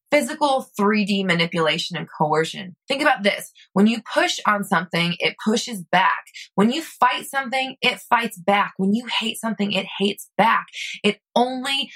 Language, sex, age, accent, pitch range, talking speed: English, female, 20-39, American, 190-250 Hz, 160 wpm